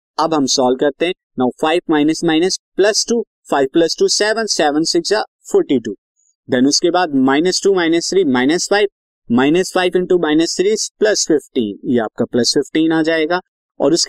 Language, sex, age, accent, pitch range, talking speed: Hindi, male, 20-39, native, 140-230 Hz, 60 wpm